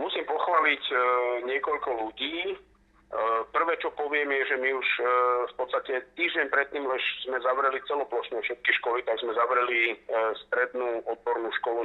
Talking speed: 135 wpm